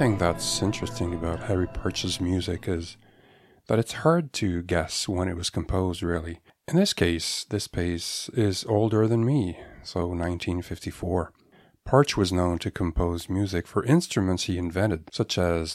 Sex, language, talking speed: male, French, 155 wpm